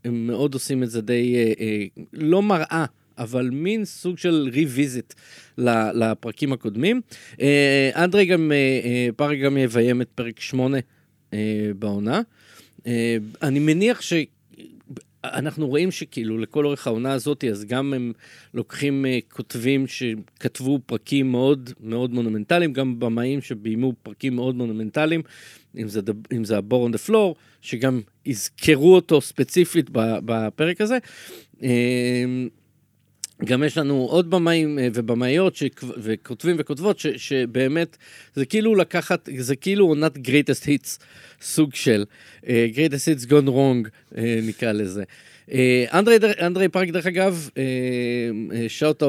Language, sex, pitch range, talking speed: Hebrew, male, 115-150 Hz, 110 wpm